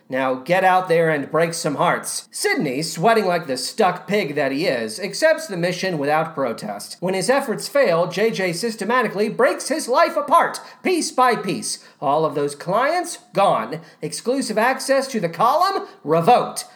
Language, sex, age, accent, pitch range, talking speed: English, male, 40-59, American, 175-260 Hz, 165 wpm